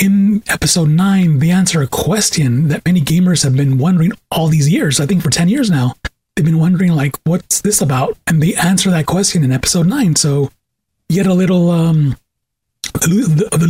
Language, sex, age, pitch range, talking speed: English, male, 30-49, 145-190 Hz, 190 wpm